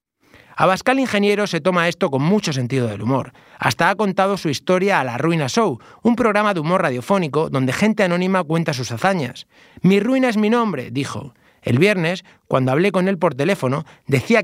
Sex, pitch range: male, 140-205 Hz